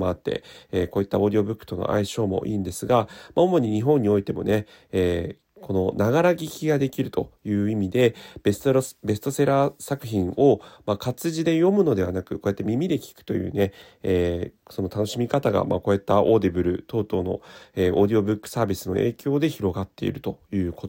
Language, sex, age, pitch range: Japanese, male, 30-49, 95-140 Hz